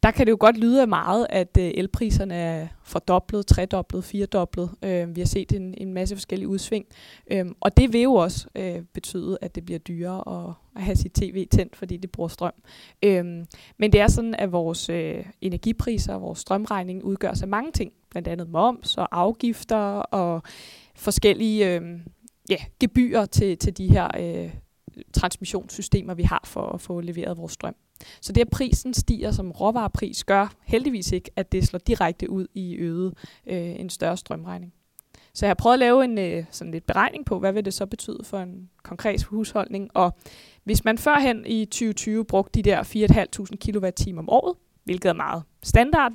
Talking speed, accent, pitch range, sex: 170 wpm, native, 175-215 Hz, female